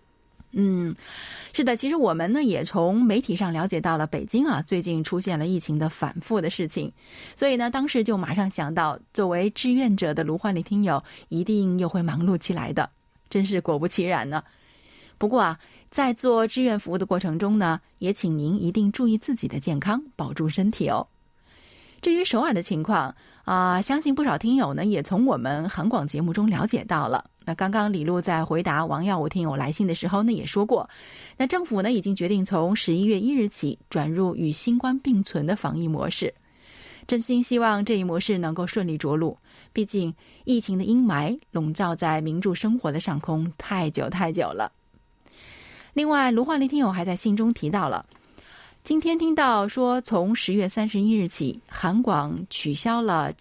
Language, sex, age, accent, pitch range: Chinese, female, 20-39, native, 170-230 Hz